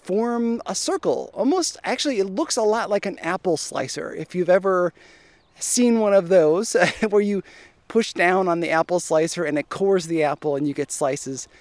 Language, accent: English, American